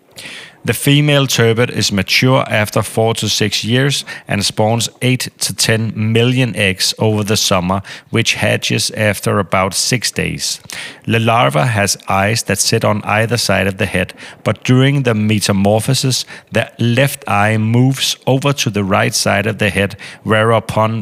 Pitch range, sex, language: 100-120 Hz, male, Danish